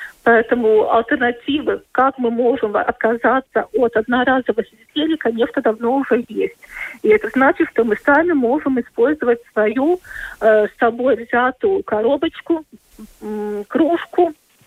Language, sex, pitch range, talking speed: Russian, female, 220-295 Hz, 115 wpm